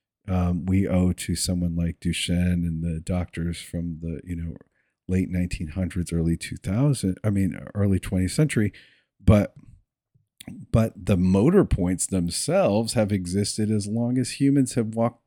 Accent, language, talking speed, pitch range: American, English, 145 wpm, 90-110 Hz